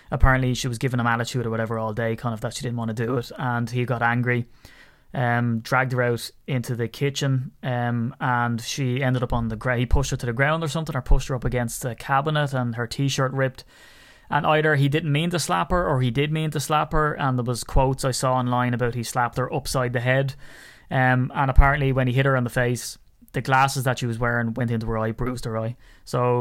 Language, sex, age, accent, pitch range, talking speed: English, male, 20-39, Irish, 120-140 Hz, 250 wpm